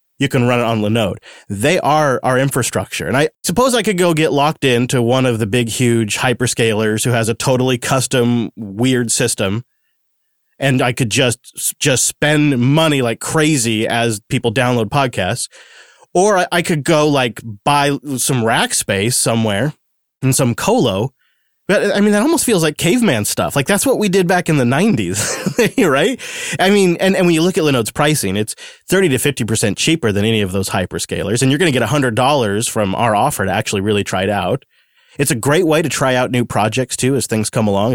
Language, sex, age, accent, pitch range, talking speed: English, male, 30-49, American, 115-150 Hz, 205 wpm